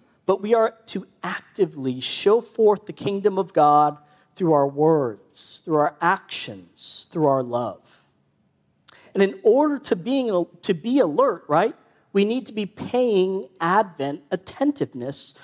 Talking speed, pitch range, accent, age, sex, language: 135 wpm, 145-205 Hz, American, 40-59, male, English